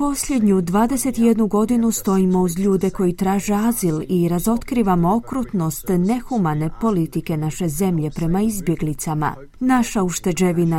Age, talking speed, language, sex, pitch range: 30-49, 115 wpm, Croatian, female, 170-225 Hz